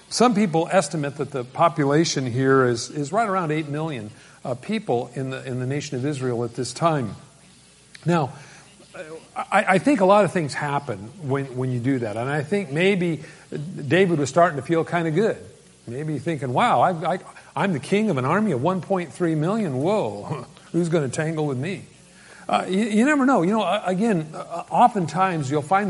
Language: English